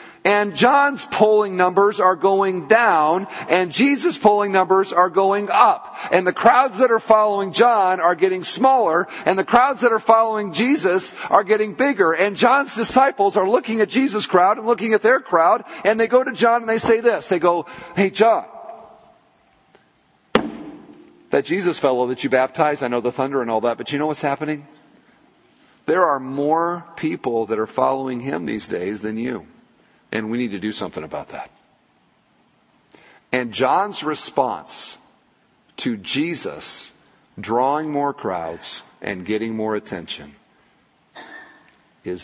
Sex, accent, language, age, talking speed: male, American, English, 50-69, 160 wpm